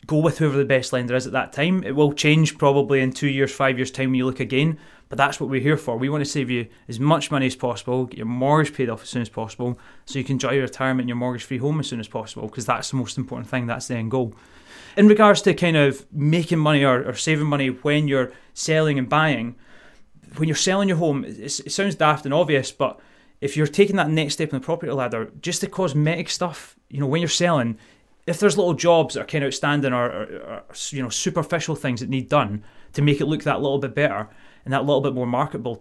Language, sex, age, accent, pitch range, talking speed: English, male, 30-49, British, 130-155 Hz, 255 wpm